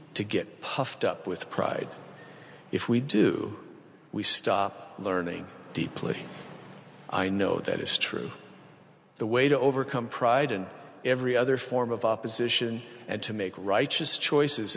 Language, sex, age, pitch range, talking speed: English, male, 50-69, 105-125 Hz, 140 wpm